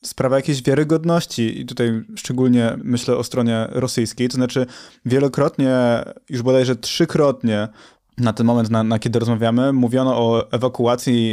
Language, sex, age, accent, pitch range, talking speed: Polish, male, 20-39, native, 120-140 Hz, 140 wpm